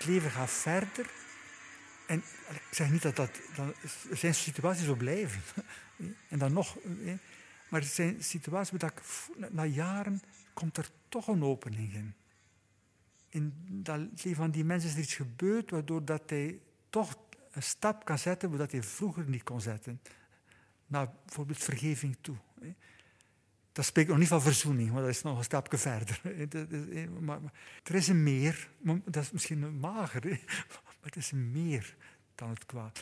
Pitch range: 120-175 Hz